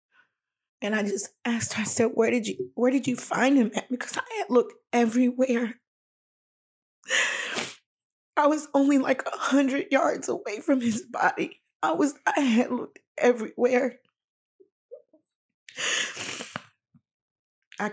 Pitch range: 205-260 Hz